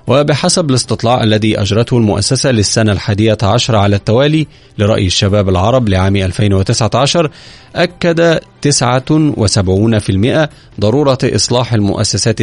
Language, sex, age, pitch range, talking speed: Arabic, male, 30-49, 105-135 Hz, 95 wpm